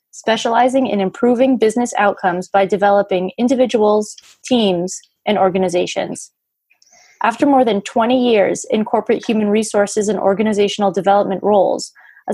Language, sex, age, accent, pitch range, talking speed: English, female, 20-39, American, 195-230 Hz, 120 wpm